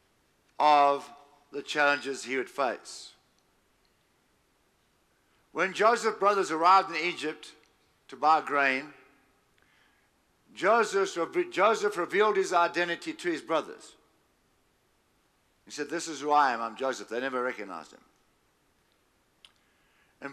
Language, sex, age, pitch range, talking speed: English, male, 50-69, 140-195 Hz, 105 wpm